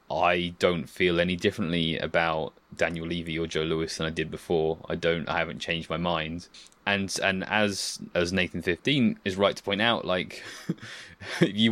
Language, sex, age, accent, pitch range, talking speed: English, male, 20-39, British, 85-100 Hz, 180 wpm